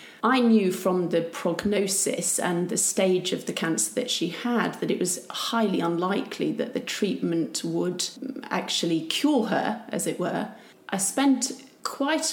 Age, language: 30-49, English